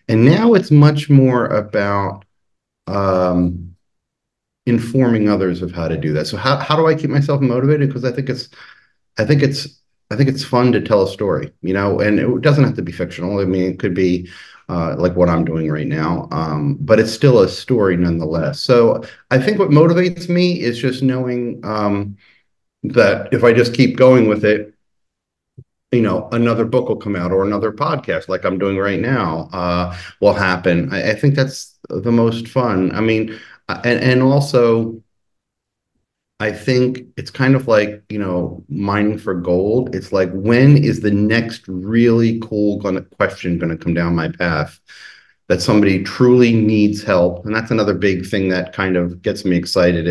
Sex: male